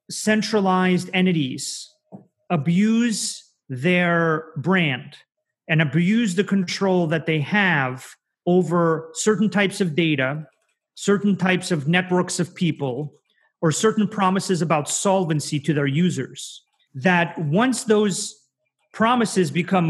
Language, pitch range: English, 160-200 Hz